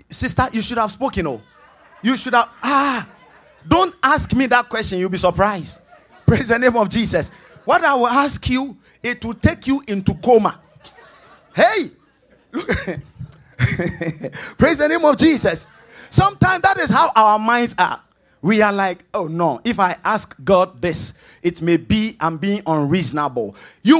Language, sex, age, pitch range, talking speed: English, male, 30-49, 195-285 Hz, 165 wpm